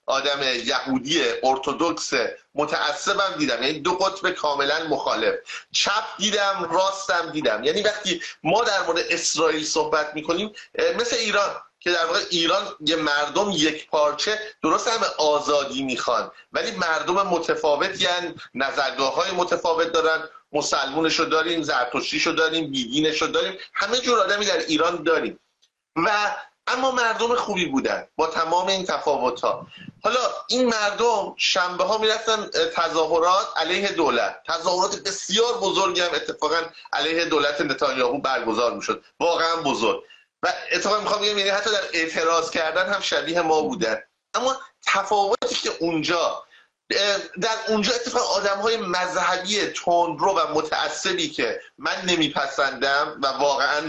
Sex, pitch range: male, 155-215 Hz